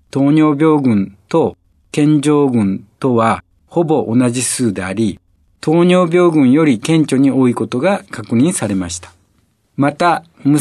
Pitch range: 105-155 Hz